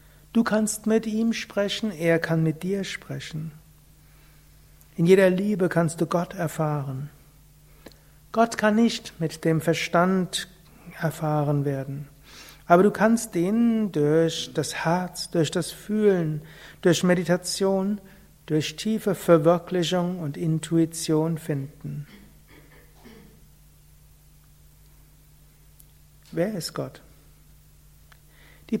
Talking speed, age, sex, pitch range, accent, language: 100 wpm, 60-79, male, 150-185 Hz, German, German